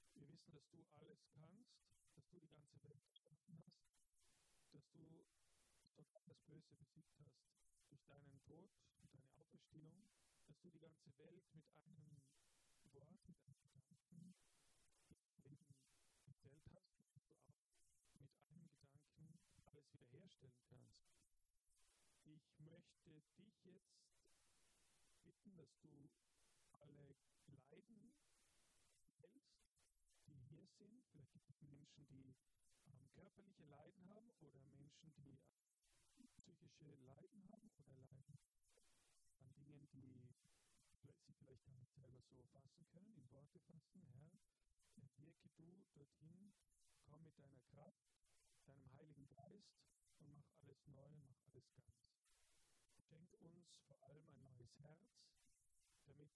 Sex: male